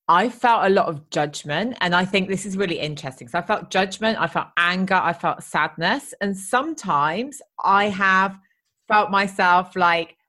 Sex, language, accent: female, English, British